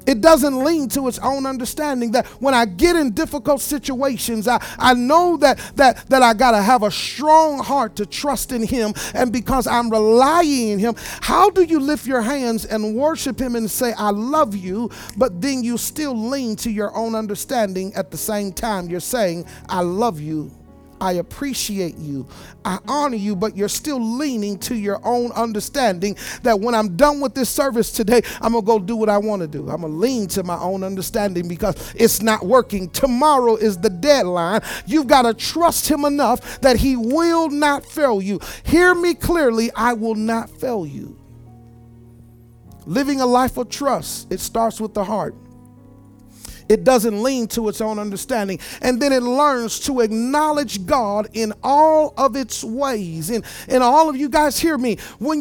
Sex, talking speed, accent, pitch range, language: male, 190 wpm, American, 210-275 Hz, English